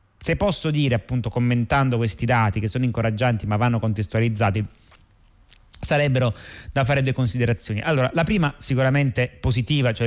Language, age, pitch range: Italian, 30-49, 115-135 Hz